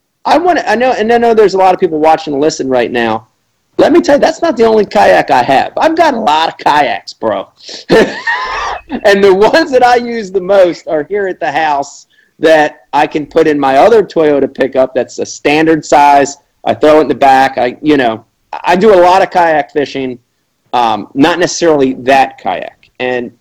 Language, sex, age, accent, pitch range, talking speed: English, male, 40-59, American, 140-200 Hz, 215 wpm